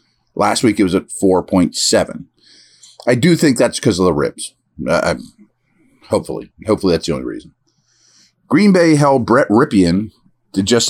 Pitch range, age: 105-145 Hz, 40-59